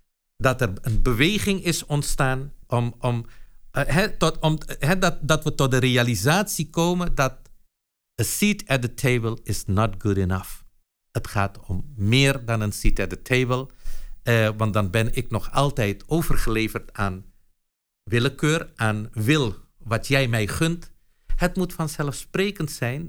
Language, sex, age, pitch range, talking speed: Dutch, male, 50-69, 110-160 Hz, 155 wpm